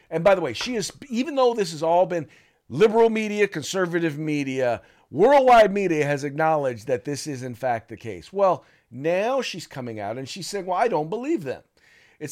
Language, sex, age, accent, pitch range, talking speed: English, male, 50-69, American, 125-165 Hz, 200 wpm